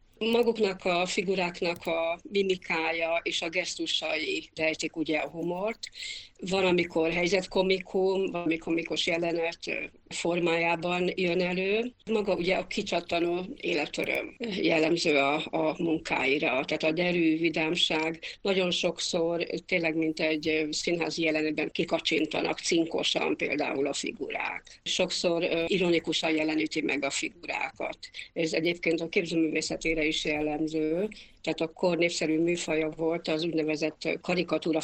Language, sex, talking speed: Hungarian, female, 110 wpm